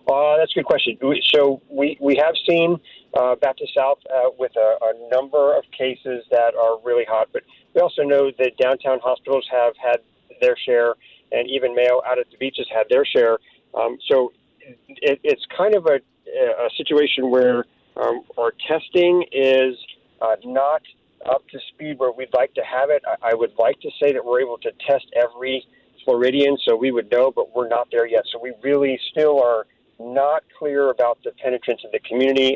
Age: 40-59